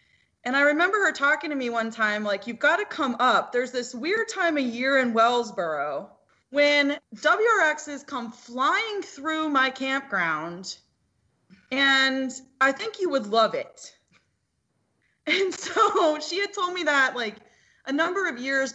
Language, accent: English, American